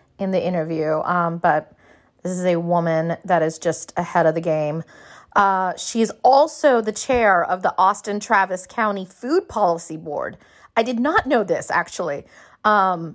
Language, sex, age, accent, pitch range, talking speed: English, female, 30-49, American, 170-210 Hz, 170 wpm